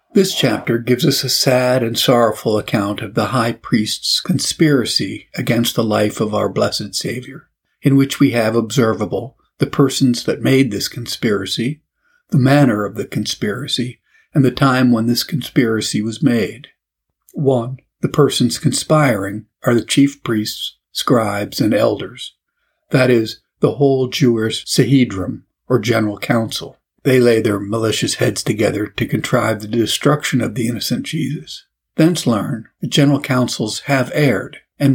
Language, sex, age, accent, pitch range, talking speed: English, male, 50-69, American, 110-140 Hz, 150 wpm